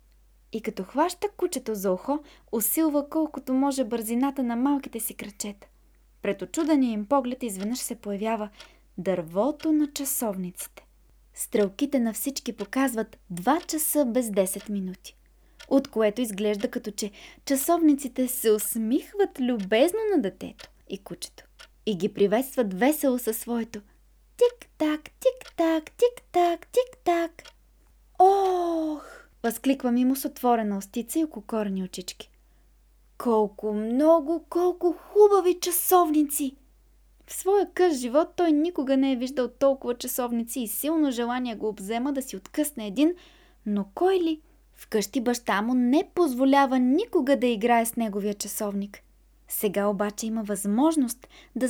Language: Bulgarian